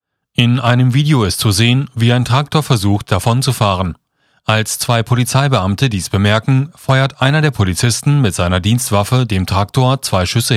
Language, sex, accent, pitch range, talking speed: German, male, German, 100-130 Hz, 155 wpm